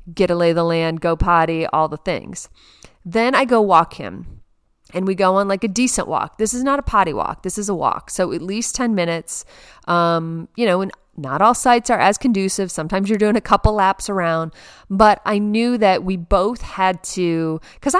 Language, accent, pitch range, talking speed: English, American, 170-215 Hz, 210 wpm